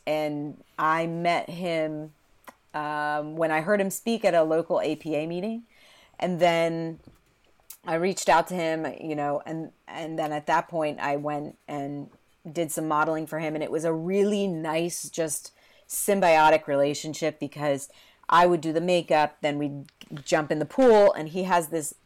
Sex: female